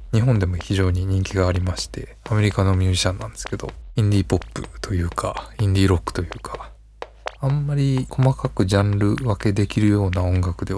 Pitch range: 95-115 Hz